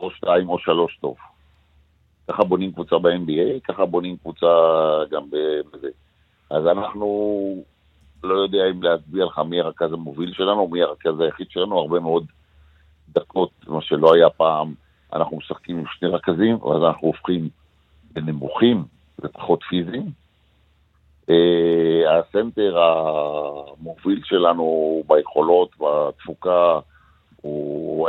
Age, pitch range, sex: 50-69, 75-90 Hz, male